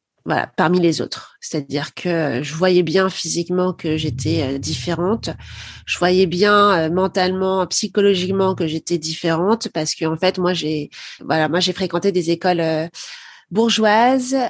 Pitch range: 170-200 Hz